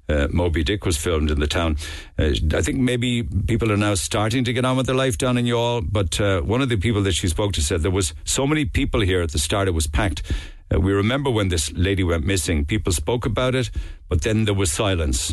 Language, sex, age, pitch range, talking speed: English, male, 60-79, 85-110 Hz, 255 wpm